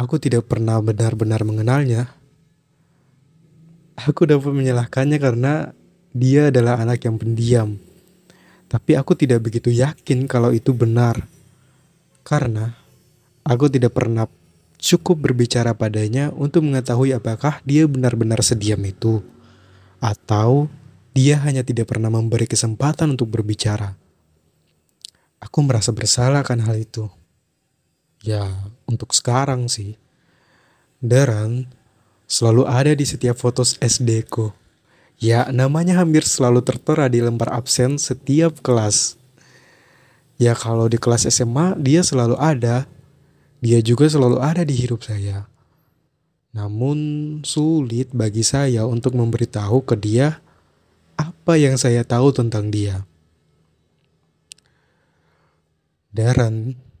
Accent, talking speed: native, 105 wpm